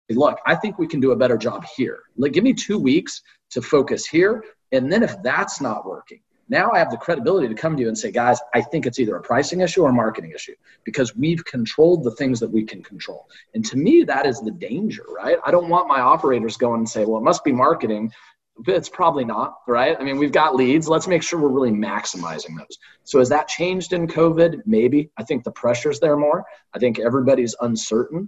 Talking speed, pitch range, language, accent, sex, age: 235 wpm, 115-165 Hz, English, American, male, 30-49